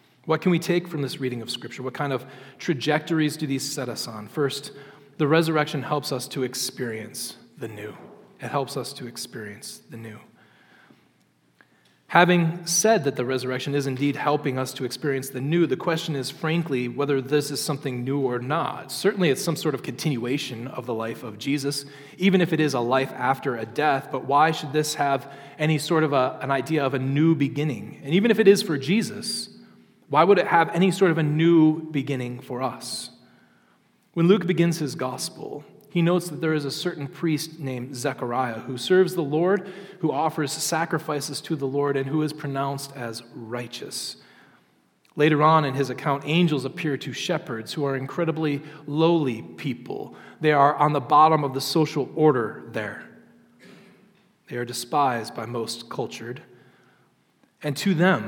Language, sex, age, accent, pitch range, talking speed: English, male, 30-49, American, 130-165 Hz, 180 wpm